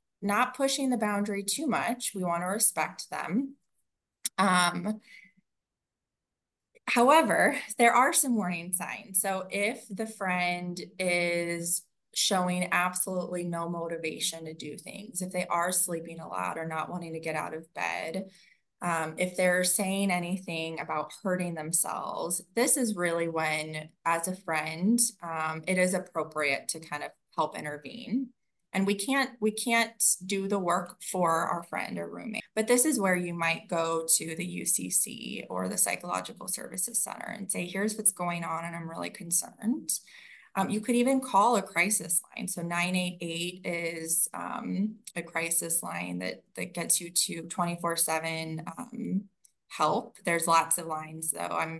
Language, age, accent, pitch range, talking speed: English, 20-39, American, 165-210 Hz, 155 wpm